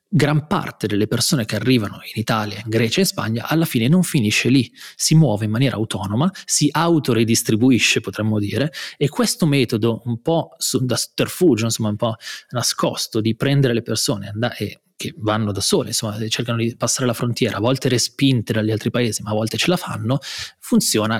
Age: 30-49